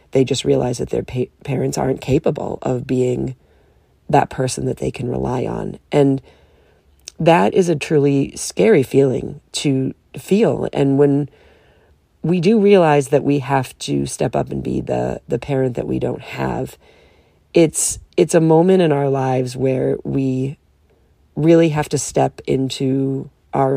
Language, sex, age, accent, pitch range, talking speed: English, female, 40-59, American, 125-145 Hz, 155 wpm